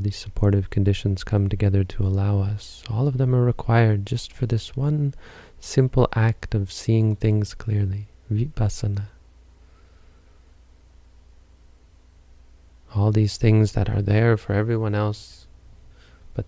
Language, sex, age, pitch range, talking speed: English, male, 20-39, 85-105 Hz, 125 wpm